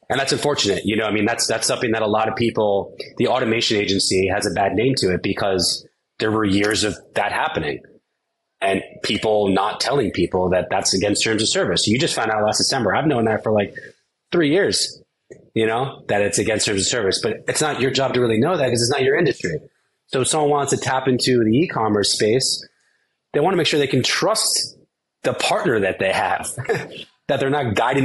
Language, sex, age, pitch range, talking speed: English, male, 20-39, 100-125 Hz, 225 wpm